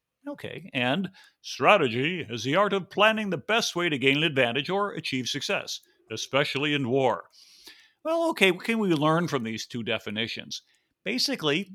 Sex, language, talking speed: male, English, 165 wpm